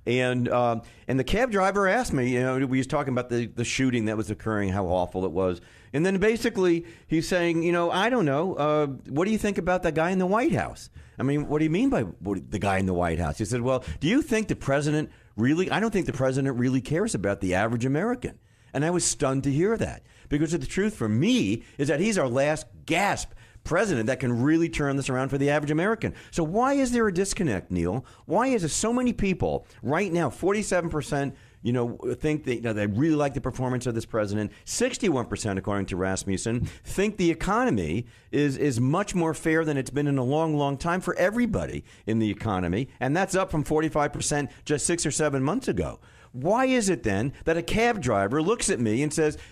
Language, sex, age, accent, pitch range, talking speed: English, male, 40-59, American, 115-170 Hz, 230 wpm